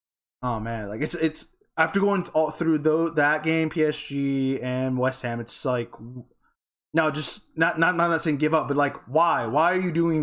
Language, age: English, 20-39